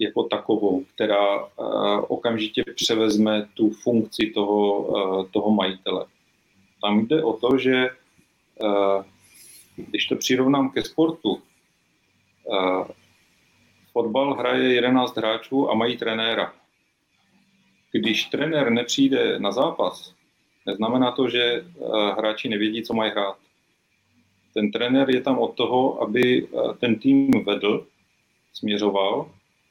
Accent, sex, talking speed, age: native, male, 105 wpm, 40-59